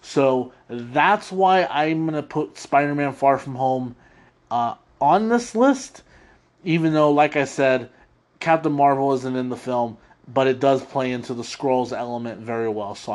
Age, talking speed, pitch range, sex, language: 30-49, 170 wpm, 125-160 Hz, male, English